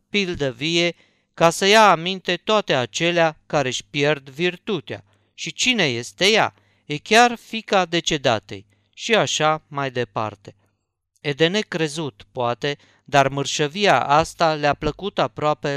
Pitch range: 130-180 Hz